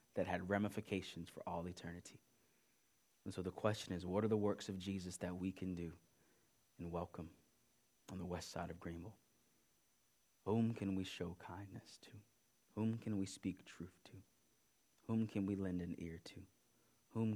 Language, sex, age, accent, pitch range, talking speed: English, male, 30-49, American, 85-100 Hz, 170 wpm